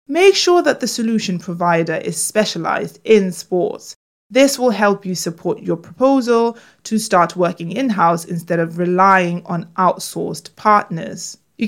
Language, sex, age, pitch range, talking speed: English, female, 20-39, 180-245 Hz, 145 wpm